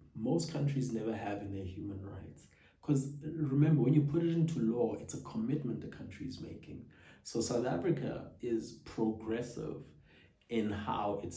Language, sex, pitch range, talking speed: English, male, 100-140 Hz, 165 wpm